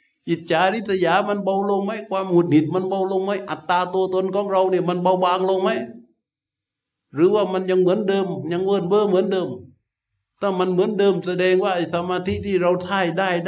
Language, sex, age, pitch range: Thai, male, 60-79, 115-185 Hz